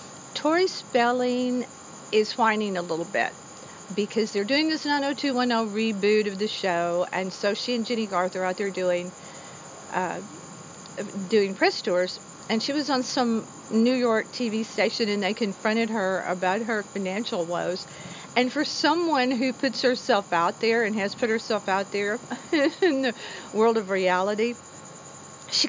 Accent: American